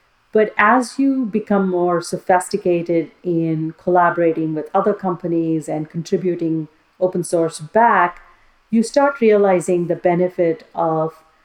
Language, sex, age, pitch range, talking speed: English, female, 40-59, 165-195 Hz, 115 wpm